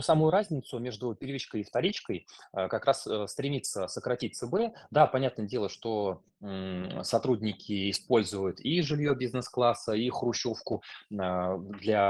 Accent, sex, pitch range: native, male, 95-125 Hz